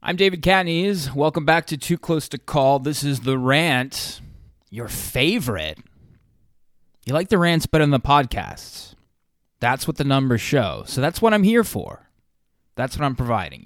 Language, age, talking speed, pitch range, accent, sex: English, 20-39, 170 wpm, 110-150 Hz, American, male